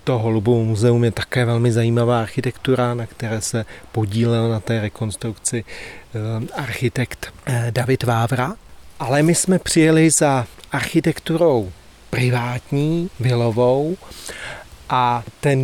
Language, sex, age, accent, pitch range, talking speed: Czech, male, 40-59, native, 115-145 Hz, 105 wpm